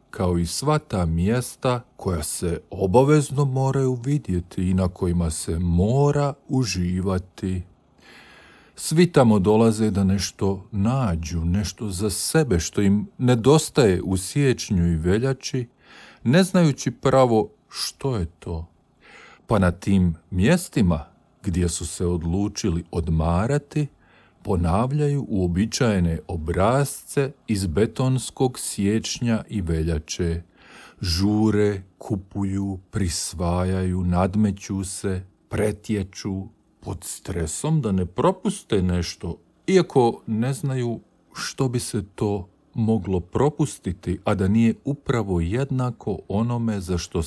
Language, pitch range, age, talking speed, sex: Croatian, 90-125 Hz, 50-69, 105 wpm, male